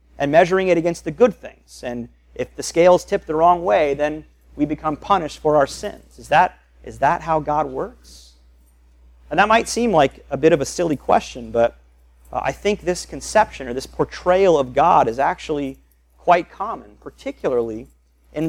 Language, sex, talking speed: English, male, 185 wpm